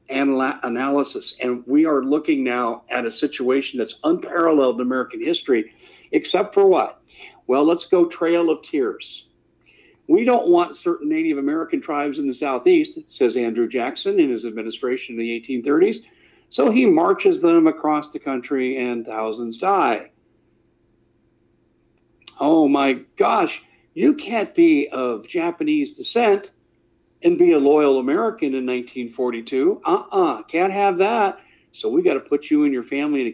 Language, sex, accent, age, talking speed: English, male, American, 50-69, 155 wpm